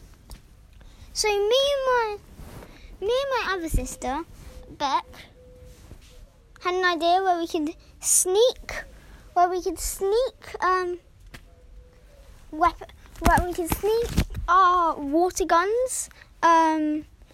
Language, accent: English, British